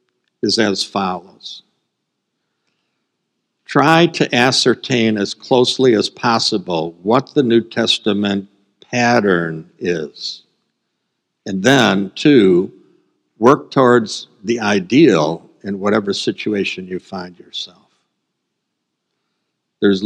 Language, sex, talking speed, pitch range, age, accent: English, male, 90 wpm, 100-125 Hz, 60-79, American